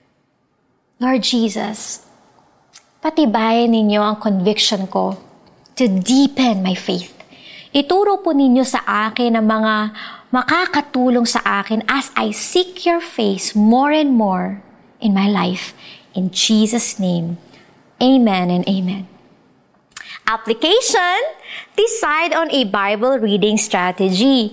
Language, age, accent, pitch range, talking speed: Filipino, 20-39, native, 215-285 Hz, 110 wpm